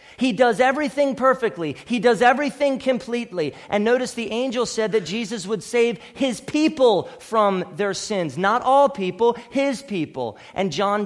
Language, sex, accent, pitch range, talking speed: English, male, American, 175-245 Hz, 155 wpm